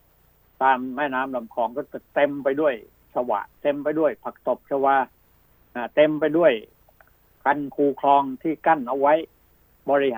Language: Thai